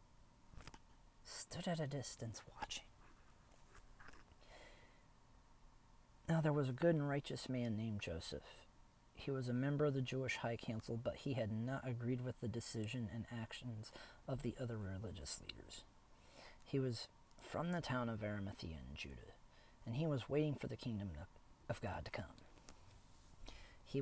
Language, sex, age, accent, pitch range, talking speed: English, male, 40-59, American, 110-130 Hz, 150 wpm